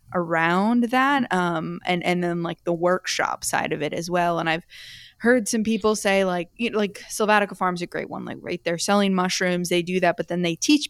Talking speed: 225 wpm